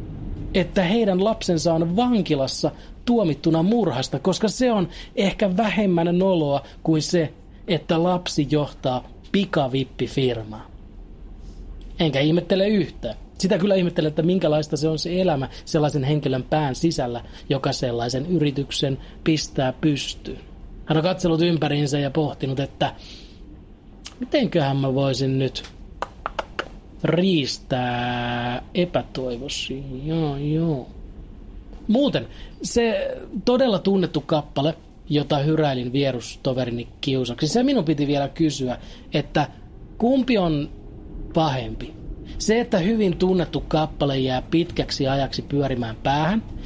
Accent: native